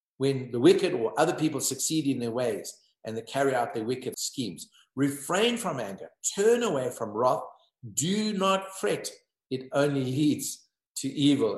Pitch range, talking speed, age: 120-190 Hz, 165 wpm, 50-69